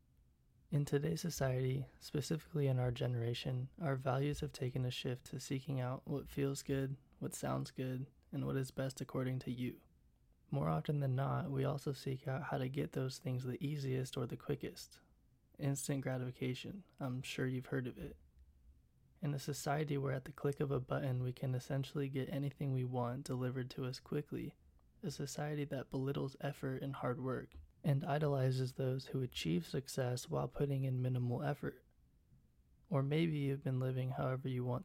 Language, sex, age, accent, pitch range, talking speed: English, male, 20-39, American, 125-140 Hz, 175 wpm